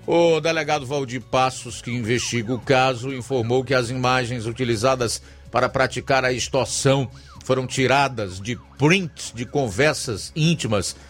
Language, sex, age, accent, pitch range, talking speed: Portuguese, male, 50-69, Brazilian, 120-150 Hz, 130 wpm